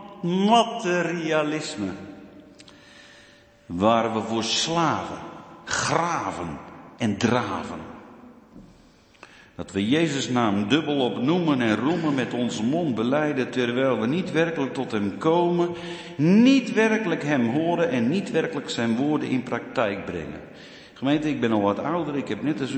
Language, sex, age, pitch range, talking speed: Dutch, male, 50-69, 110-165 Hz, 130 wpm